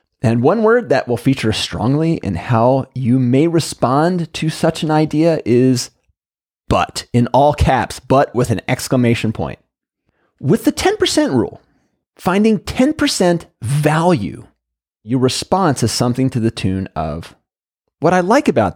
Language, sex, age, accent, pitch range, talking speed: English, male, 30-49, American, 105-155 Hz, 145 wpm